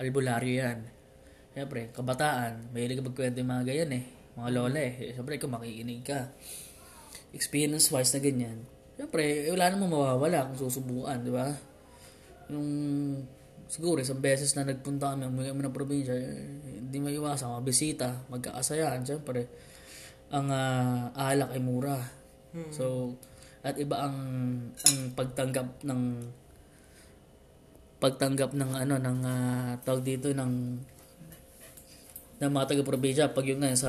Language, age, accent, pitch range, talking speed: Filipino, 20-39, native, 125-140 Hz, 130 wpm